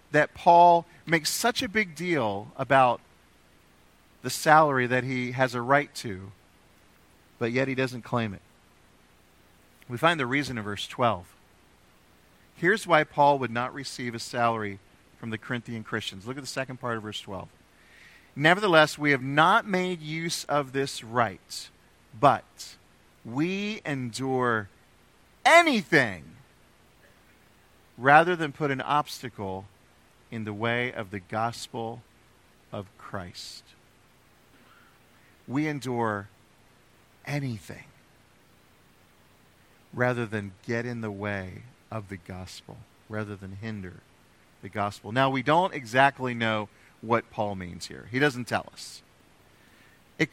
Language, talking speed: English, 125 wpm